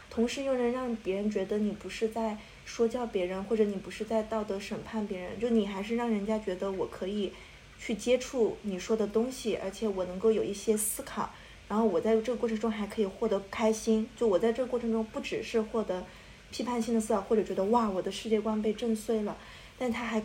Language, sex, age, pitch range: Chinese, female, 20-39, 200-235 Hz